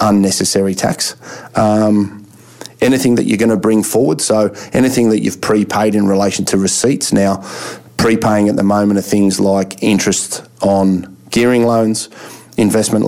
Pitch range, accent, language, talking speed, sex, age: 95-110 Hz, Australian, English, 145 wpm, male, 30-49